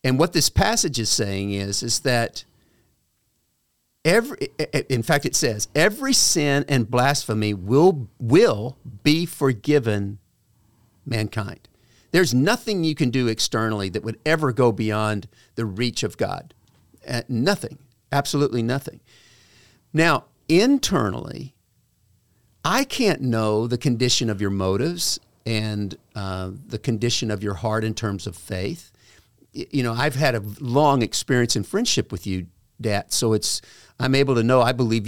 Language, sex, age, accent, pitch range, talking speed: English, male, 50-69, American, 110-145 Hz, 140 wpm